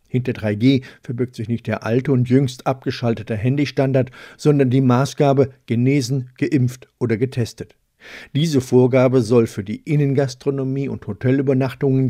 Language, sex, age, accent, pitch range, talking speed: German, male, 50-69, German, 120-140 Hz, 130 wpm